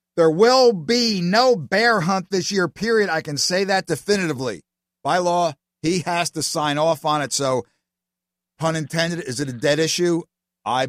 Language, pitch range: English, 140-175 Hz